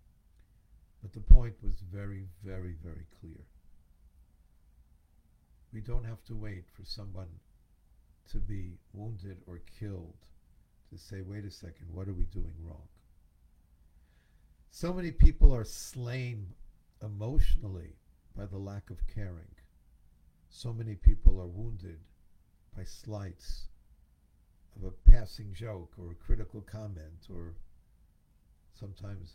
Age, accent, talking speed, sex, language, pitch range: 60-79, American, 120 wpm, male, English, 75-100 Hz